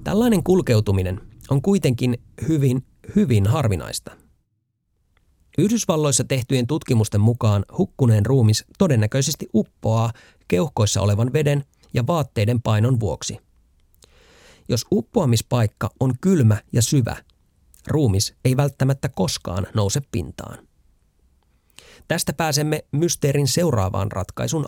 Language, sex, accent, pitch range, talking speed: Finnish, male, native, 95-140 Hz, 95 wpm